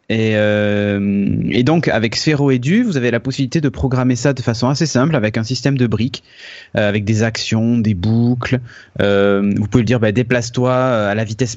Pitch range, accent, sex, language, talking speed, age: 110-135 Hz, French, male, French, 195 wpm, 20-39